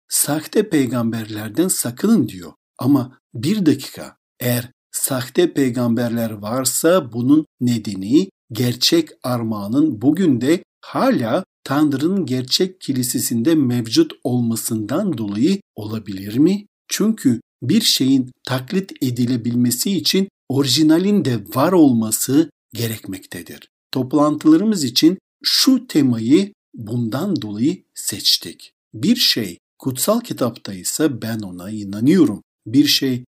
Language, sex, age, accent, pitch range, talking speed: Turkish, male, 60-79, native, 115-160 Hz, 95 wpm